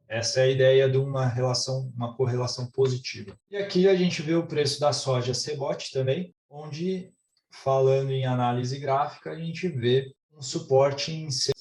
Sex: male